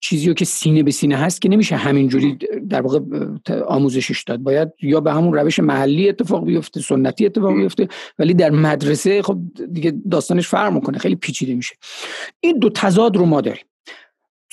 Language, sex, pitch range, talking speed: Persian, male, 145-185 Hz, 170 wpm